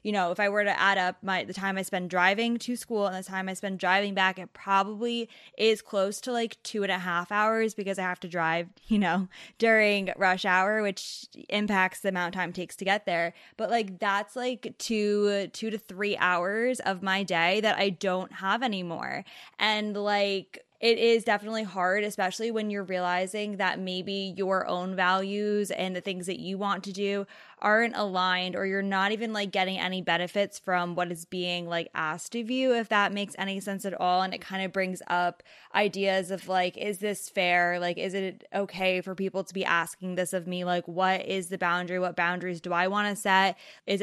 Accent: American